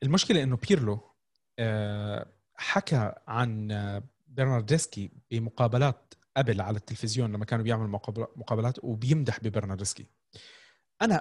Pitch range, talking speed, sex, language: 120-160 Hz, 90 wpm, male, Arabic